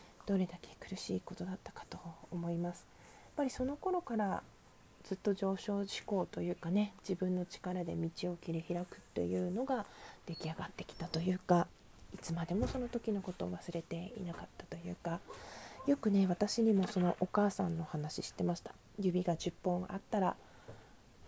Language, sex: Japanese, female